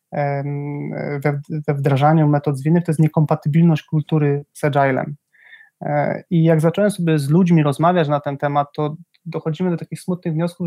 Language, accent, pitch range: Polish, native, 145-175 Hz